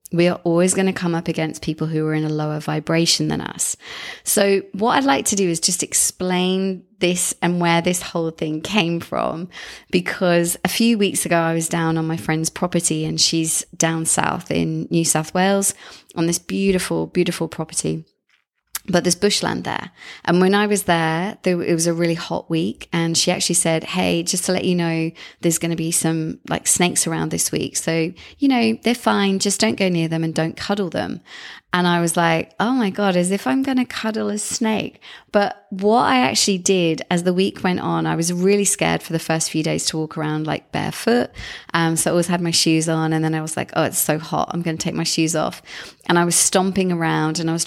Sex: female